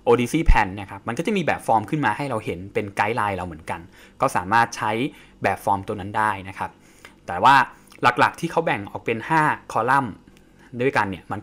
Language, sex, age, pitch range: English, male, 20-39, 105-145 Hz